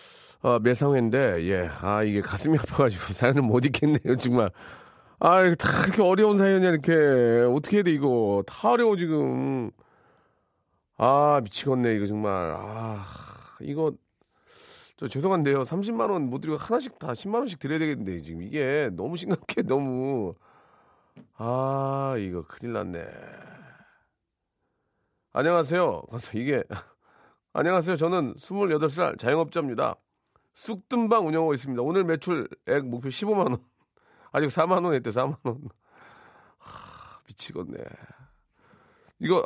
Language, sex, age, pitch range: Korean, male, 40-59, 120-185 Hz